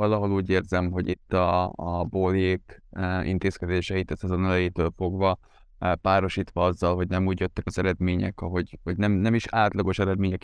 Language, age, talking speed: Hungarian, 20-39, 170 wpm